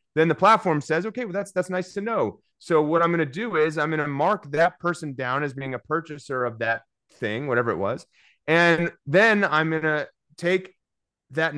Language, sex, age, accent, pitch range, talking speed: English, male, 30-49, American, 135-170 Hz, 220 wpm